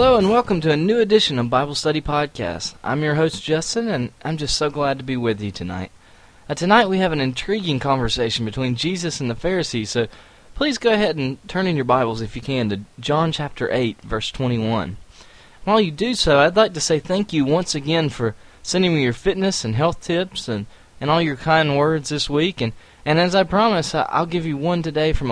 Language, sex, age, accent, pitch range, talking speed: English, male, 20-39, American, 120-165 Hz, 225 wpm